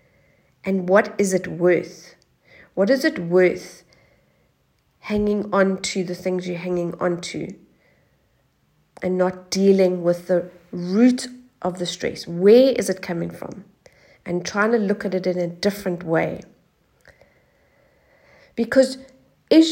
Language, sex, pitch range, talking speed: English, female, 180-230 Hz, 135 wpm